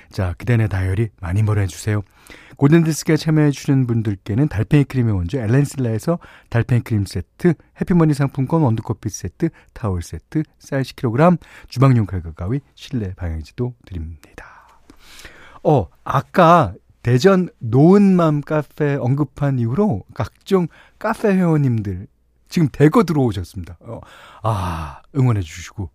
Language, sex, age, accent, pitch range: Korean, male, 40-59, native, 95-155 Hz